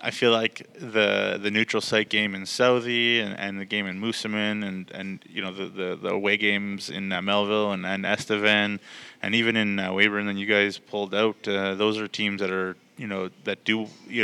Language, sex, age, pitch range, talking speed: English, male, 20-39, 100-105 Hz, 220 wpm